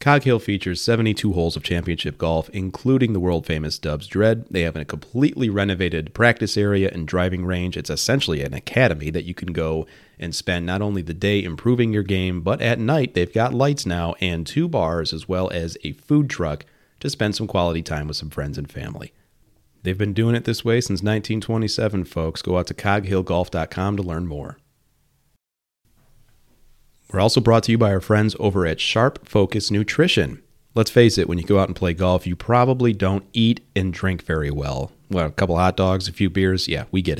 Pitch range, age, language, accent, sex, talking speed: 85-110 Hz, 30-49, English, American, male, 200 wpm